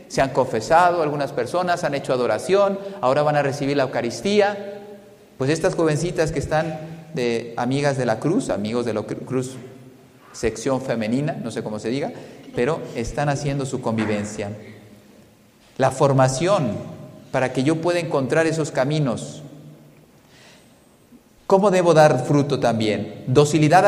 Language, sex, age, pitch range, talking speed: Spanish, male, 40-59, 130-165 Hz, 140 wpm